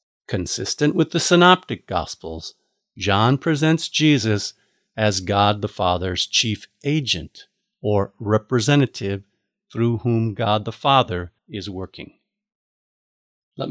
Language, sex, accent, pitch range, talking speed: English, male, American, 100-150 Hz, 105 wpm